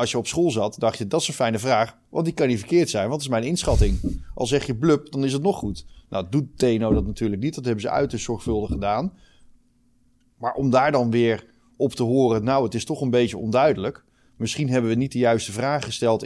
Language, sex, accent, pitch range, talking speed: Dutch, male, Dutch, 110-135 Hz, 245 wpm